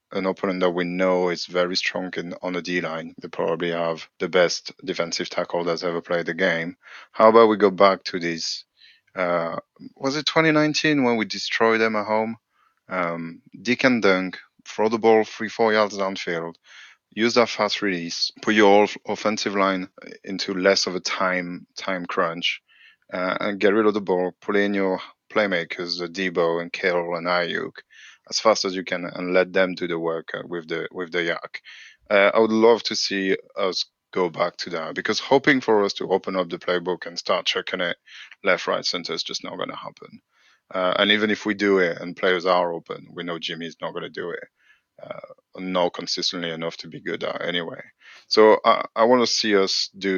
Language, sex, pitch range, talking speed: English, male, 85-105 Hz, 205 wpm